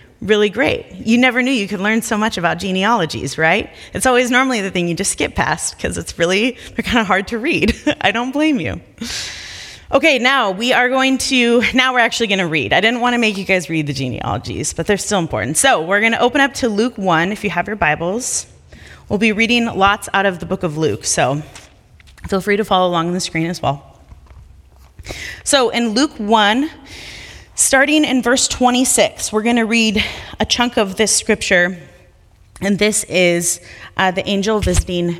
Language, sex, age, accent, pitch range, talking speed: English, female, 30-49, American, 165-245 Hz, 200 wpm